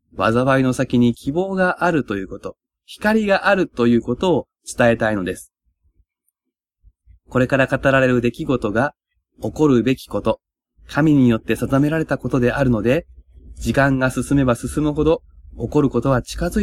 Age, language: 20-39, Japanese